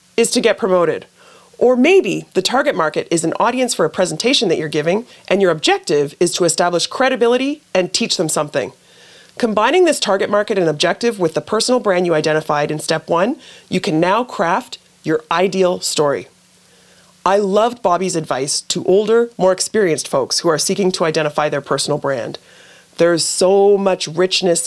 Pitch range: 175-235 Hz